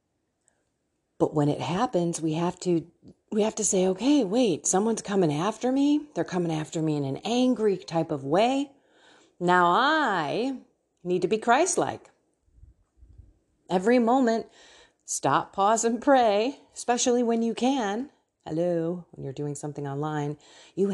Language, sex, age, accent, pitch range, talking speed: English, female, 30-49, American, 170-230 Hz, 145 wpm